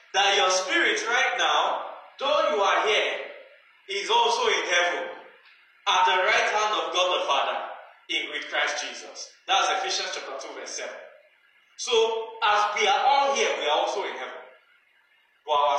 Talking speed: 165 wpm